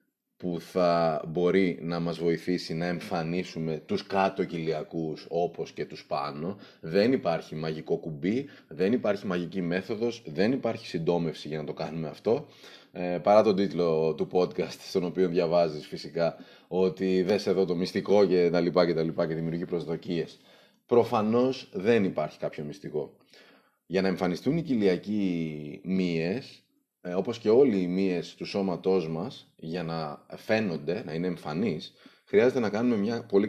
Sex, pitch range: male, 85-100 Hz